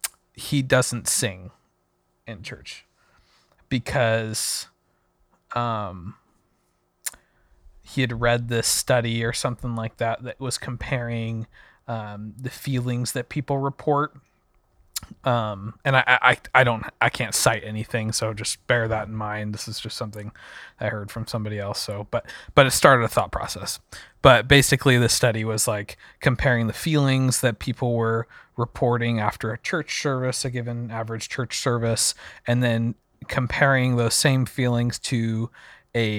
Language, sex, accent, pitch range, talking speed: English, male, American, 110-125 Hz, 145 wpm